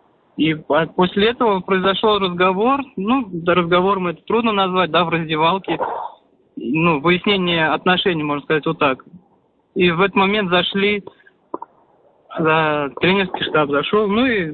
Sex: male